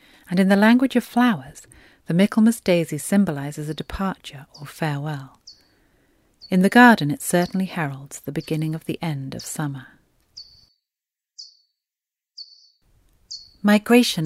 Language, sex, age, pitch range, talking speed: English, female, 40-59, 145-200 Hz, 120 wpm